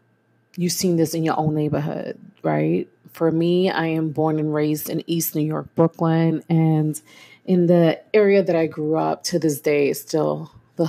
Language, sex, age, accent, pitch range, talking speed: English, female, 30-49, American, 150-180 Hz, 185 wpm